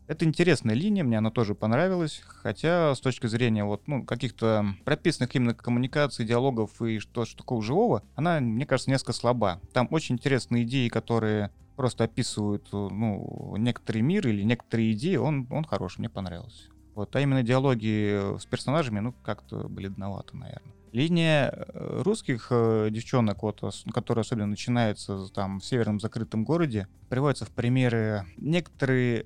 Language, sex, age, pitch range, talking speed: Russian, male, 30-49, 110-140 Hz, 145 wpm